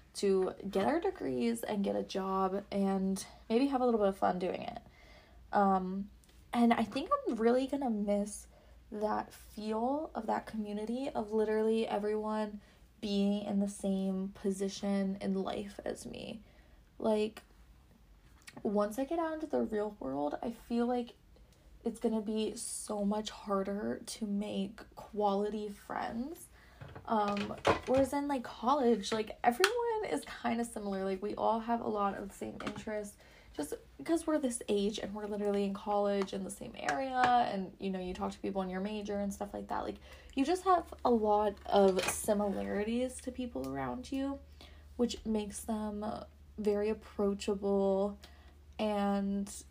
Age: 20-39